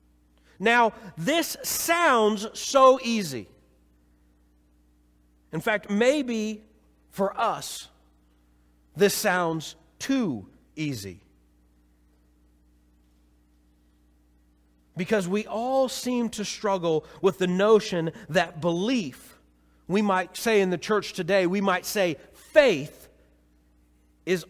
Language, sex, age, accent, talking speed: English, male, 40-59, American, 90 wpm